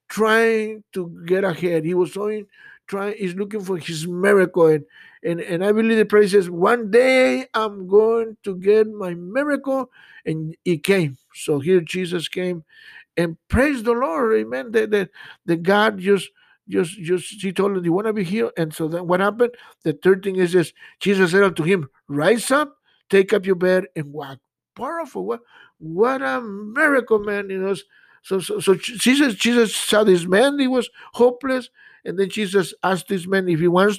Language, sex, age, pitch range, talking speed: Spanish, male, 60-79, 180-220 Hz, 185 wpm